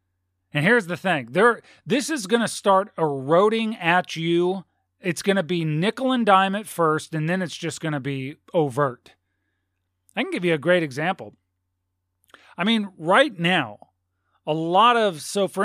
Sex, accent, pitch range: male, American, 135-190 Hz